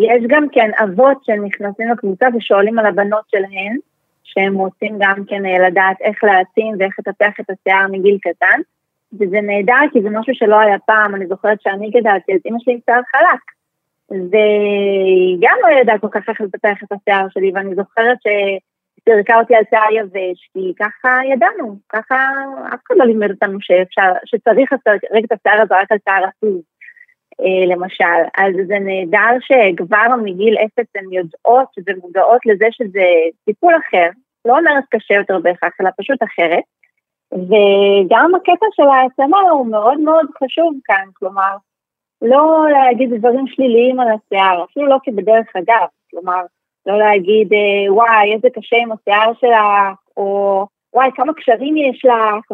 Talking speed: 155 wpm